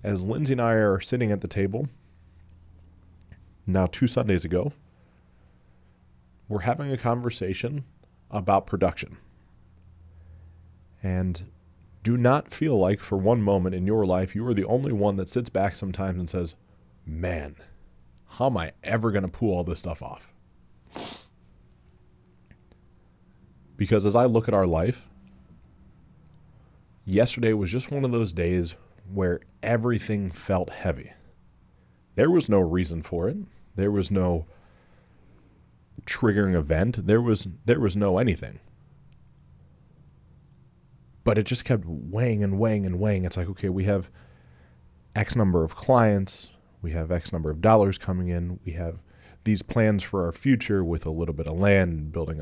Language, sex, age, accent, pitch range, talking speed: English, male, 30-49, American, 85-105 Hz, 145 wpm